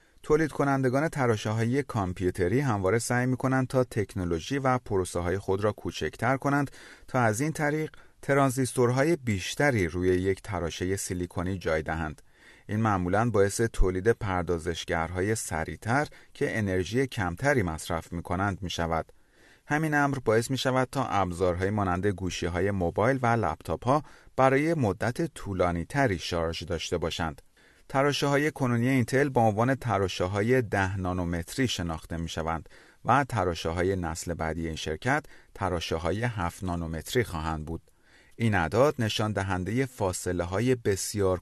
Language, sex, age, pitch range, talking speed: Persian, male, 30-49, 90-130 Hz, 130 wpm